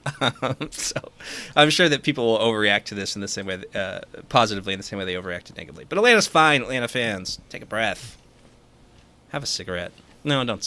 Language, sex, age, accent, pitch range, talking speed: English, male, 30-49, American, 100-125 Hz, 205 wpm